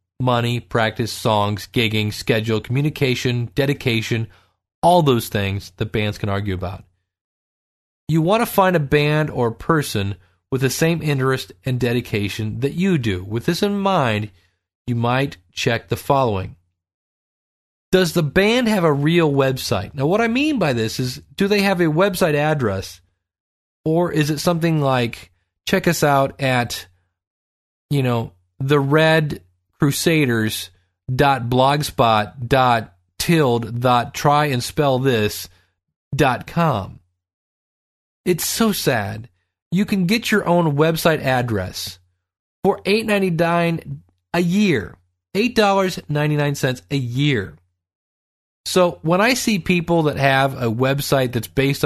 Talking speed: 120 wpm